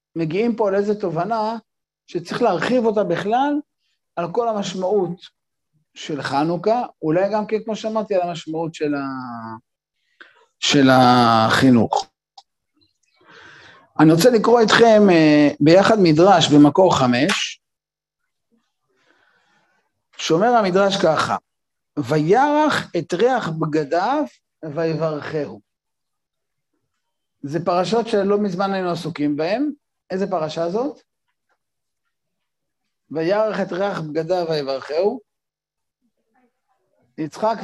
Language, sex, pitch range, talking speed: Hebrew, male, 160-225 Hz, 90 wpm